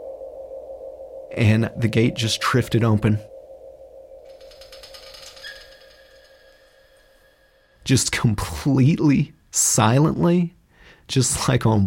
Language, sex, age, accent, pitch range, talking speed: English, male, 30-49, American, 110-155 Hz, 60 wpm